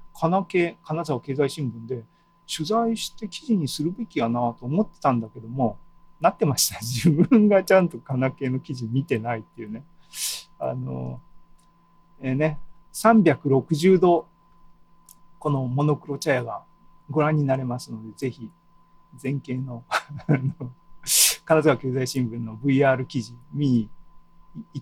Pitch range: 130-170 Hz